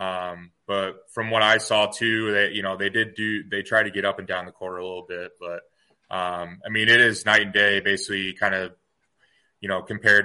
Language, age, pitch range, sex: English, 20-39, 90-105 Hz, male